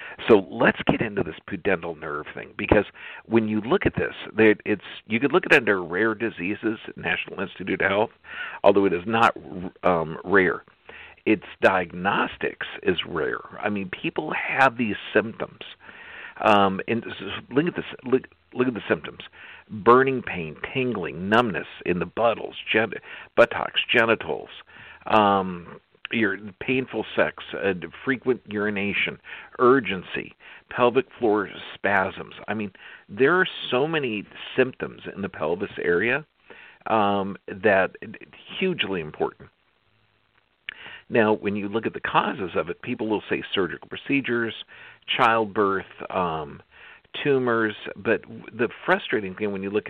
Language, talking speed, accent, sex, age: English, 140 wpm, American, male, 50-69